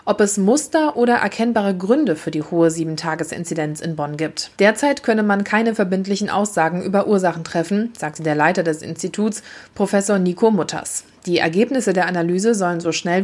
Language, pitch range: German, 170-215 Hz